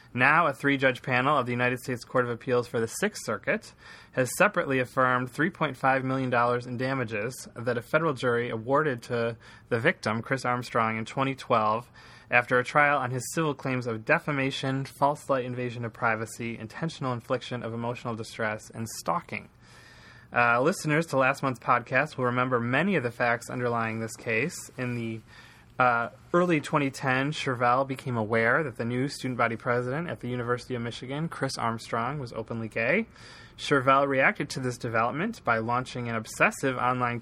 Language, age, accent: English, 20-39, American